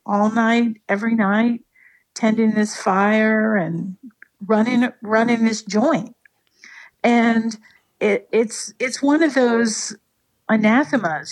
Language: English